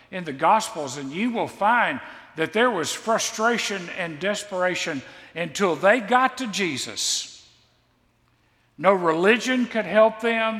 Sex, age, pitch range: male, 50-69, 175-235 Hz